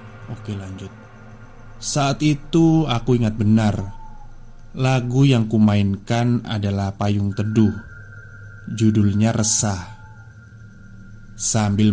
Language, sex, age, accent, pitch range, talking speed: Indonesian, male, 20-39, native, 105-120 Hz, 80 wpm